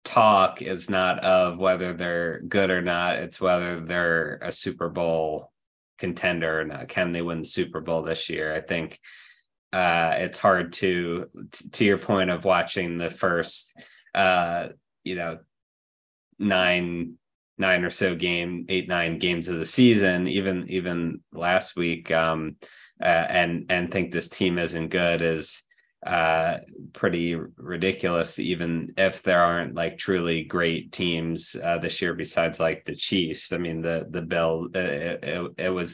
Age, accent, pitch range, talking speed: 20-39, American, 80-90 Hz, 155 wpm